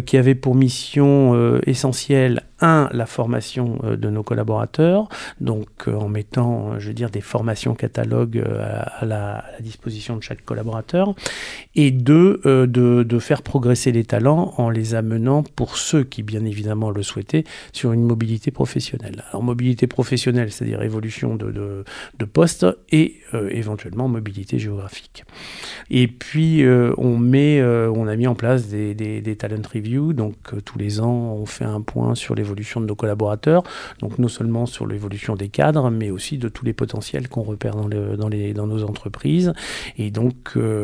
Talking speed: 180 wpm